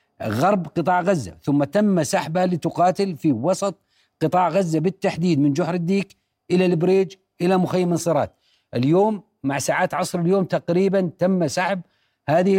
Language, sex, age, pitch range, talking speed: Arabic, male, 40-59, 160-190 Hz, 140 wpm